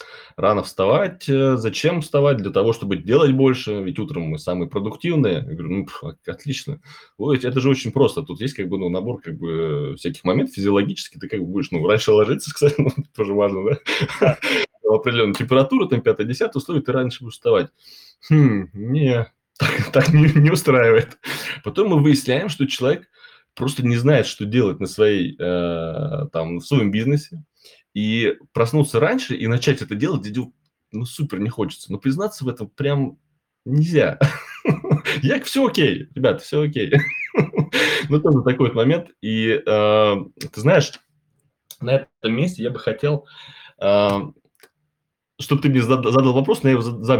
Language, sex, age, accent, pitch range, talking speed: Russian, male, 20-39, native, 110-150 Hz, 155 wpm